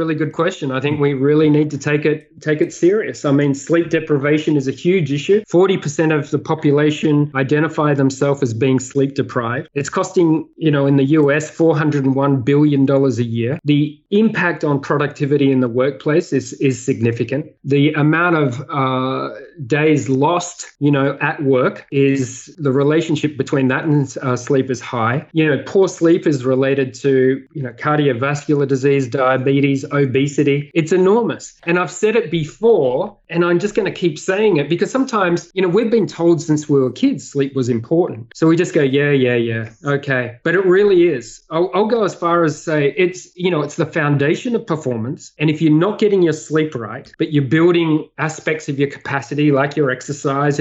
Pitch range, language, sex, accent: 135-165 Hz, English, male, Australian